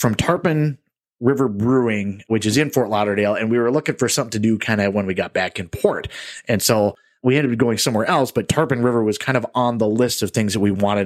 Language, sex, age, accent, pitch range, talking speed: English, male, 30-49, American, 100-125 Hz, 255 wpm